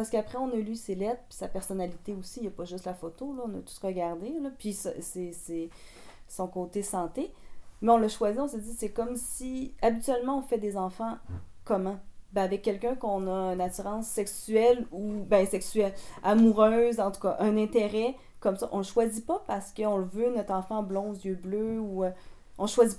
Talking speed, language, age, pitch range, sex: 215 wpm, French, 30-49, 190-235 Hz, female